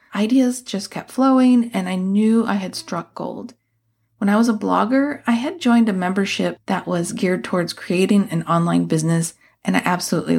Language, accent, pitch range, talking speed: English, American, 190-245 Hz, 185 wpm